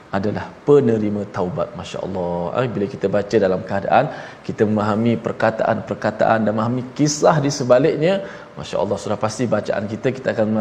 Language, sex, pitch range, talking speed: Malayalam, male, 105-145 Hz, 135 wpm